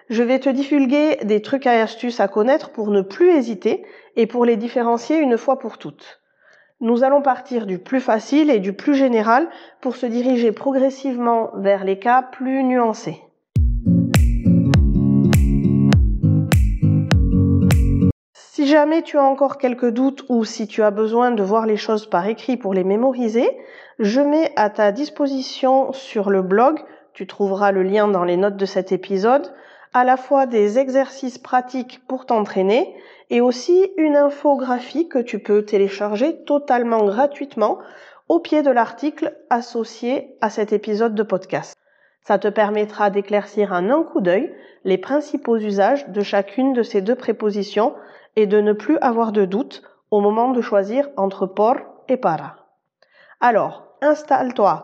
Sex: female